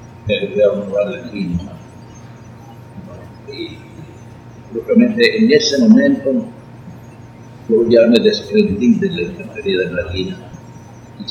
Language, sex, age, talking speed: Spanish, male, 50-69, 105 wpm